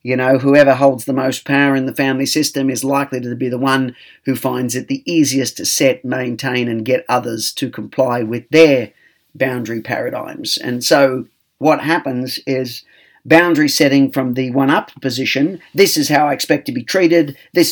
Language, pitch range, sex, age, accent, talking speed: English, 125-140 Hz, male, 40-59, Australian, 185 wpm